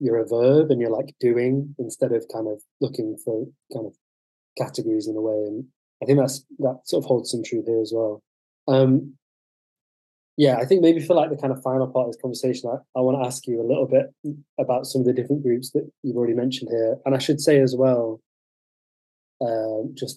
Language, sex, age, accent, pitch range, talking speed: English, male, 20-39, British, 115-135 Hz, 225 wpm